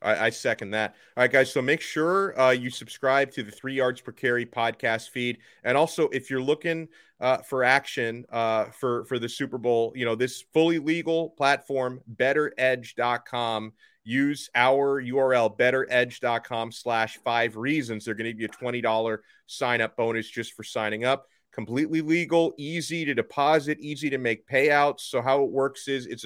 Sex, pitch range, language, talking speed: male, 115-140 Hz, English, 175 wpm